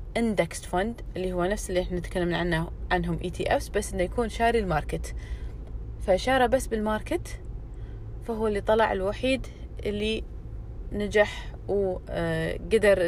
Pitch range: 160-205 Hz